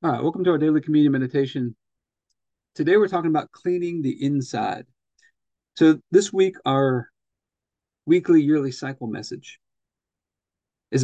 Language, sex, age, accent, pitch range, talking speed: English, male, 40-59, American, 125-160 Hz, 130 wpm